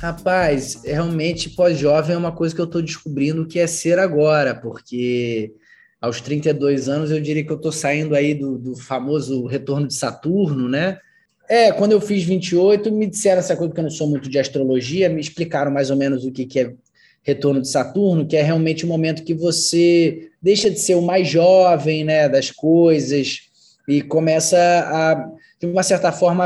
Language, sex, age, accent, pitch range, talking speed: Portuguese, male, 20-39, Brazilian, 140-175 Hz, 190 wpm